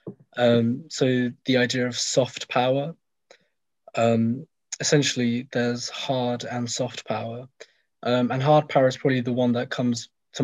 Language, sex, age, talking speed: English, male, 20-39, 145 wpm